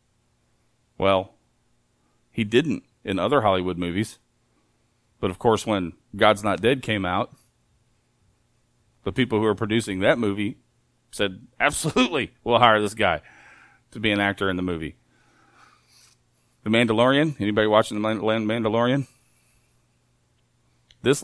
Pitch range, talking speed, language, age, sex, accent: 85-120 Hz, 120 wpm, English, 40-59, male, American